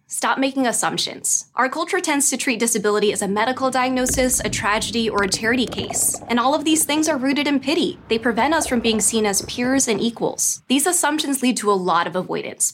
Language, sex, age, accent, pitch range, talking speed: English, female, 20-39, American, 210-275 Hz, 215 wpm